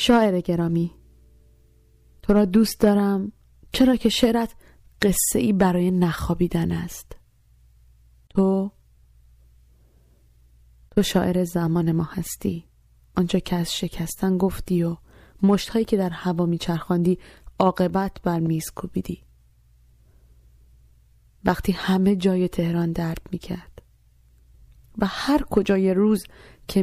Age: 20-39